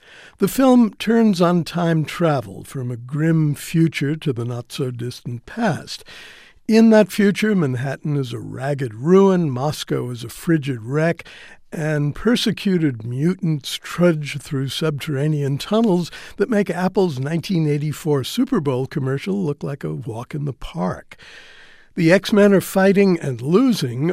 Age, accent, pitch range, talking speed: 60-79, American, 135-180 Hz, 135 wpm